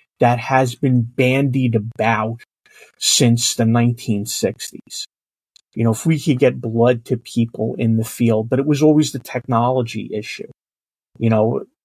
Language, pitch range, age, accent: English, 120-160 Hz, 40-59, American